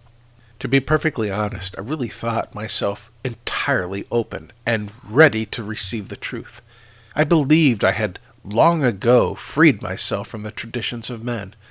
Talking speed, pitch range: 150 wpm, 105-130 Hz